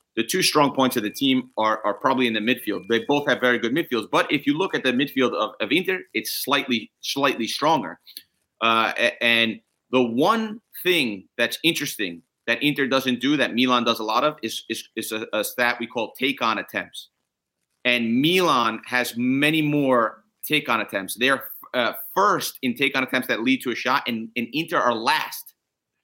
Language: English